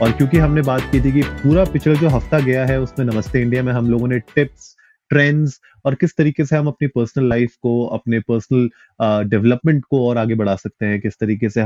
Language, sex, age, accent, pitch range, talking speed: Hindi, male, 30-49, native, 115-140 Hz, 220 wpm